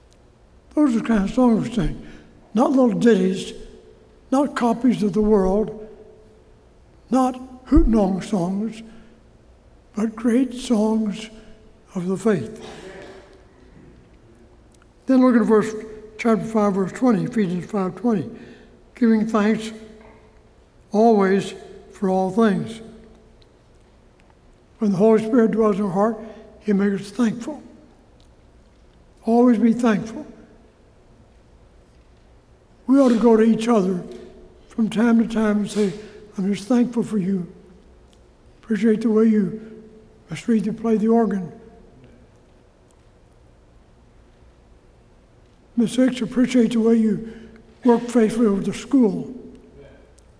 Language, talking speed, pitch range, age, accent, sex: English, 115 wpm, 195-230 Hz, 60-79, American, male